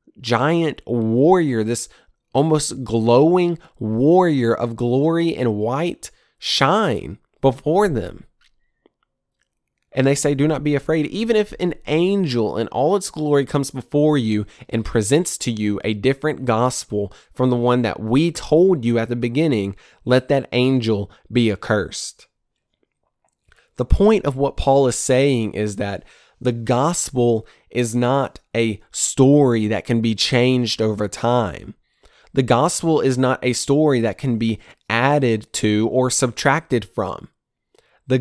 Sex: male